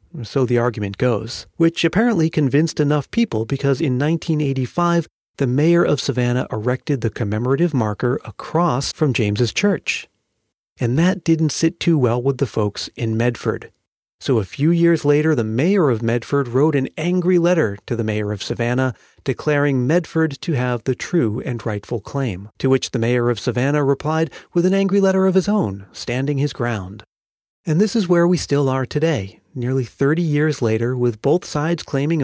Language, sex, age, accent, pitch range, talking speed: English, male, 40-59, American, 120-160 Hz, 175 wpm